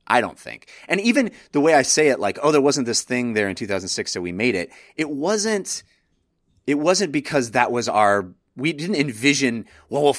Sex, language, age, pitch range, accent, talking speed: male, English, 30-49, 110-165 Hz, American, 210 wpm